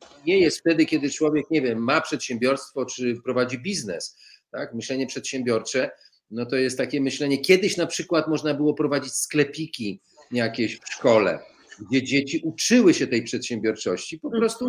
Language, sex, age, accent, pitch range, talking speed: Polish, male, 40-59, native, 130-180 Hz, 155 wpm